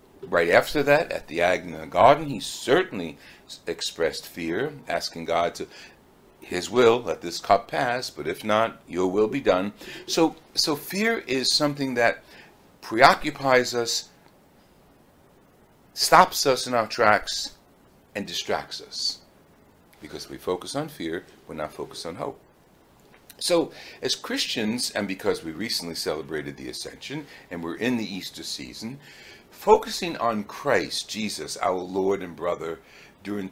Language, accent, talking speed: English, American, 140 wpm